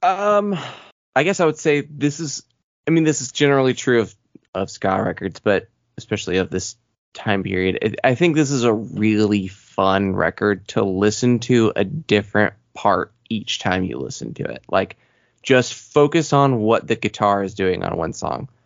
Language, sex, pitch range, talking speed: English, male, 100-125 Hz, 180 wpm